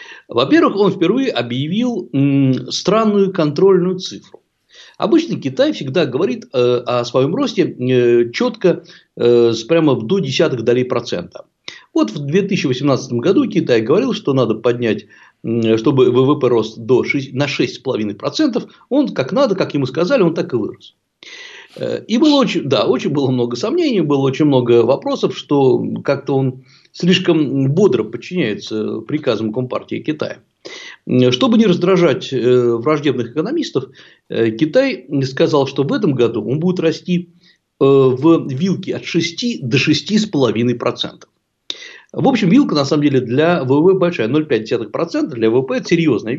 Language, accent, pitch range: Russian, native, 130-195 Hz